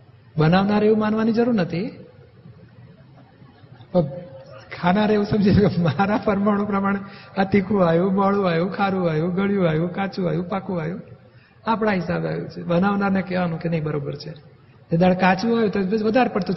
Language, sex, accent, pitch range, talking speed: Gujarati, male, native, 150-200 Hz, 90 wpm